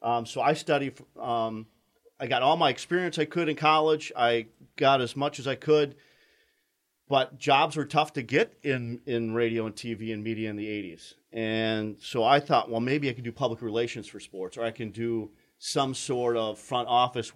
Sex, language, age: male, English, 40-59